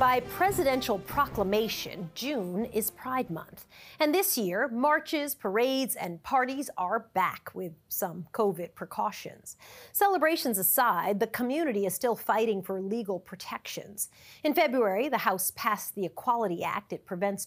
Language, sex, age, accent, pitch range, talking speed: English, female, 40-59, American, 185-255 Hz, 135 wpm